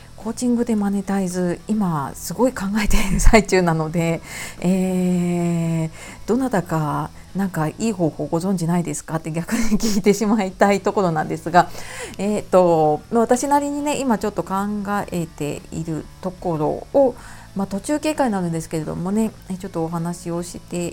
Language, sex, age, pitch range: Japanese, female, 40-59, 165-225 Hz